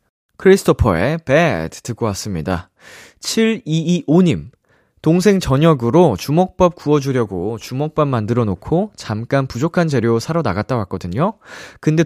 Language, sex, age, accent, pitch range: Korean, male, 20-39, native, 105-160 Hz